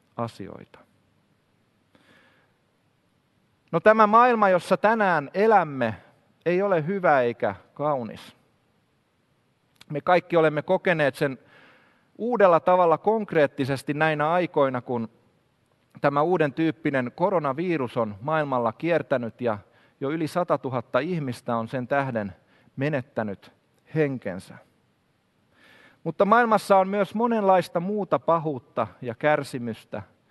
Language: Finnish